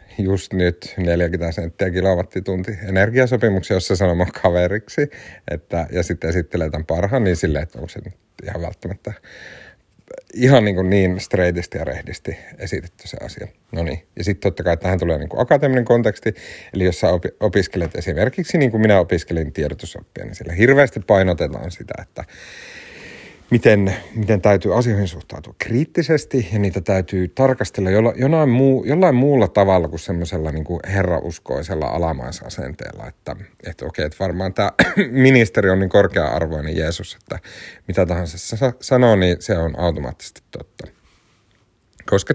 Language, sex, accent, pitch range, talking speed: Finnish, male, native, 85-110 Hz, 145 wpm